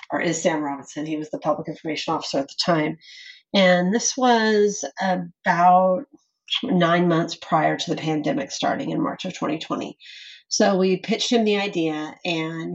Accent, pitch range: American, 160-185 Hz